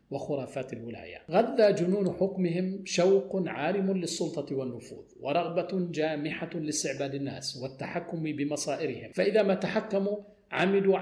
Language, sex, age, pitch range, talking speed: Arabic, male, 50-69, 140-175 Hz, 105 wpm